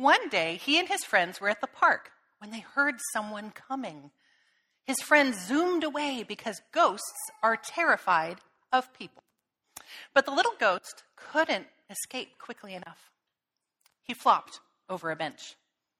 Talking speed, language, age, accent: 145 wpm, English, 40-59, American